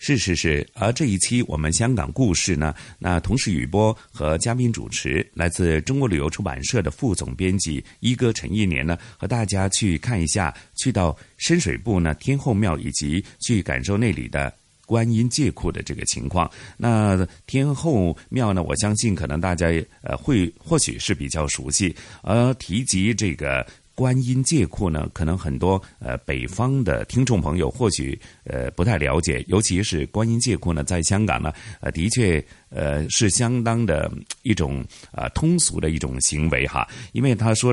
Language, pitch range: Chinese, 80-115 Hz